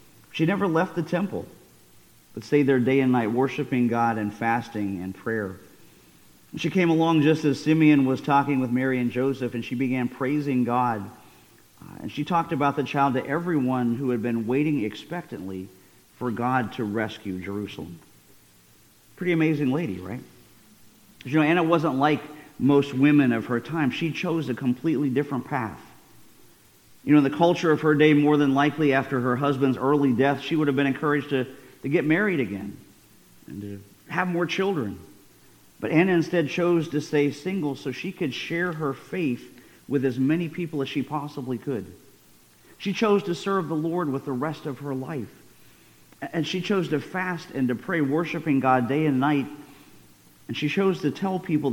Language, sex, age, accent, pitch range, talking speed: English, male, 50-69, American, 125-160 Hz, 180 wpm